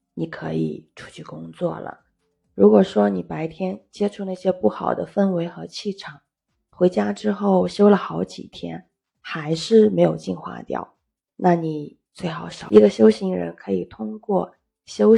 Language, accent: Chinese, native